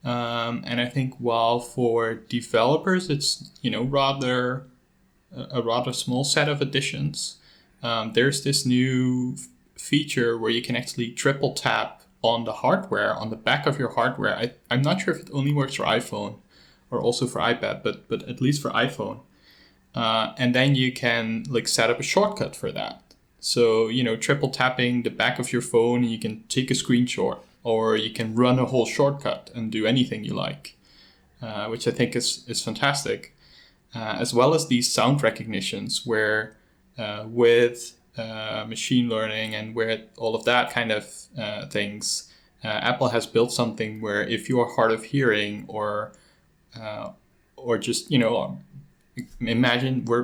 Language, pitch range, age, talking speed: English, 110-130 Hz, 10-29, 170 wpm